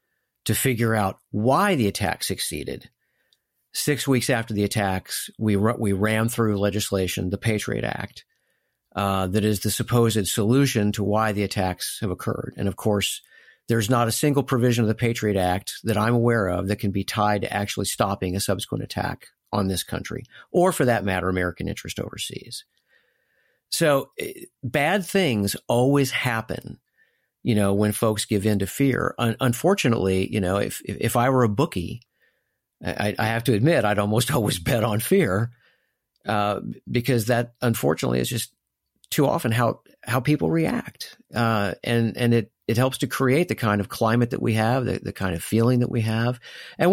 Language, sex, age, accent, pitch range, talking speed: English, male, 50-69, American, 100-125 Hz, 180 wpm